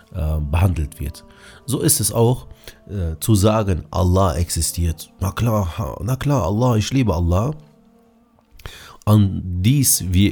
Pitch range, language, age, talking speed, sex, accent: 90-115 Hz, German, 30-49, 130 wpm, male, German